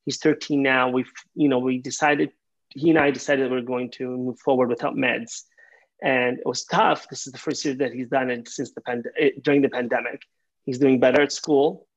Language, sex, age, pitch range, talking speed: English, male, 30-49, 130-150 Hz, 225 wpm